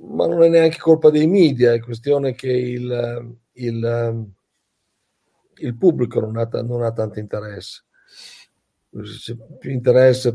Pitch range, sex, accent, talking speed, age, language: 115-125 Hz, male, native, 140 wpm, 50-69, Italian